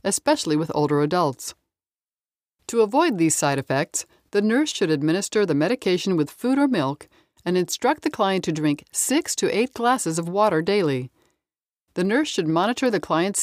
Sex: female